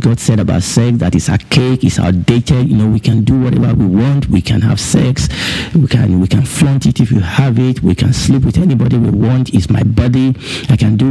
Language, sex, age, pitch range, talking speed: English, male, 50-69, 110-135 Hz, 245 wpm